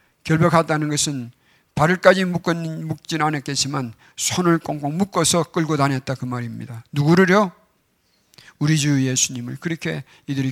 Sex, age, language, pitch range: male, 50-69, Korean, 135-170 Hz